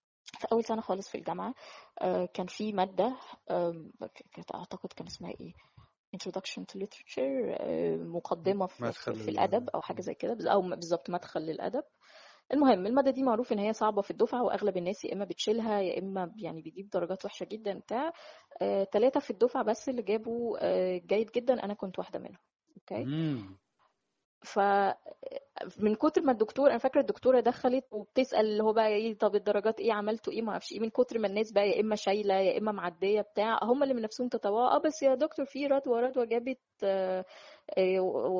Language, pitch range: Arabic, 190-245 Hz